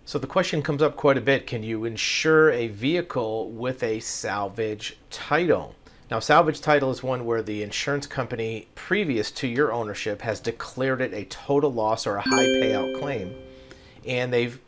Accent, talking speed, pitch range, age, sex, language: American, 175 wpm, 110-135 Hz, 40-59, male, English